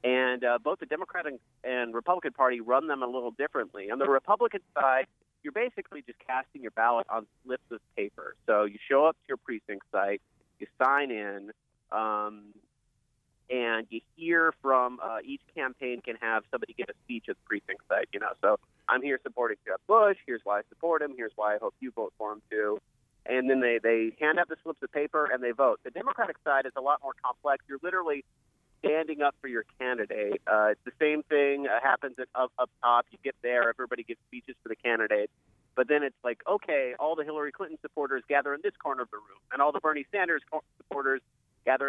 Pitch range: 120-155 Hz